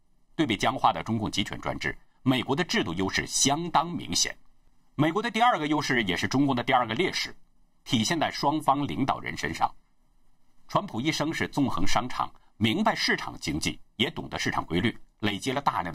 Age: 50-69